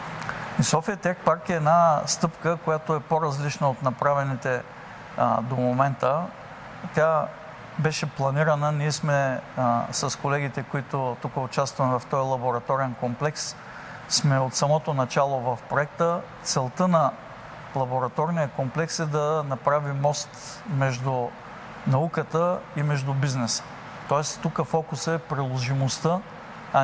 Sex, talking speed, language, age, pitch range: male, 120 wpm, Bulgarian, 50-69, 135-155 Hz